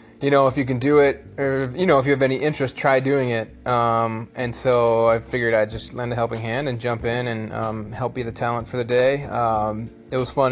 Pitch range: 115-130 Hz